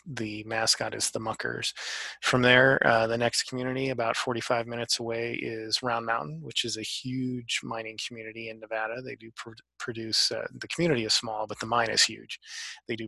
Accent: American